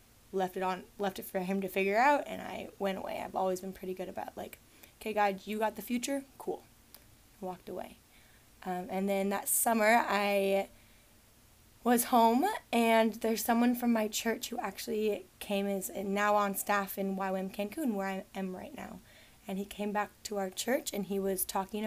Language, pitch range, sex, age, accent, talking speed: English, 190-225 Hz, female, 20-39, American, 200 wpm